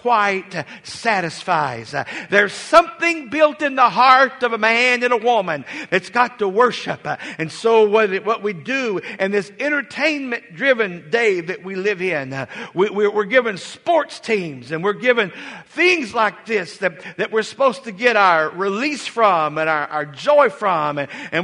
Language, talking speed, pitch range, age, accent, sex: English, 180 wpm, 200-255 Hz, 50-69, American, male